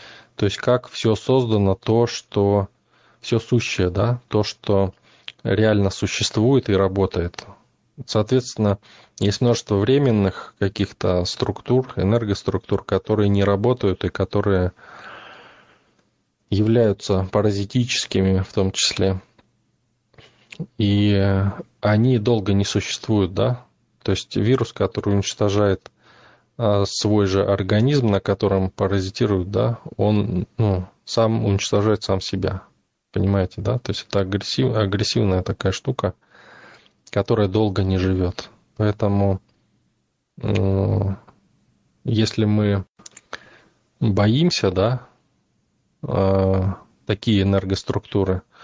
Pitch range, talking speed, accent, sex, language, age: 95-115 Hz, 95 wpm, native, male, Russian, 20-39